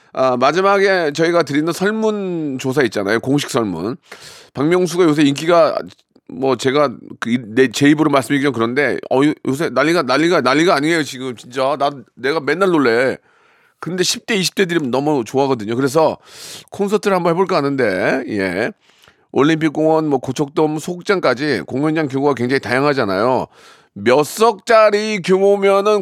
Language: Korean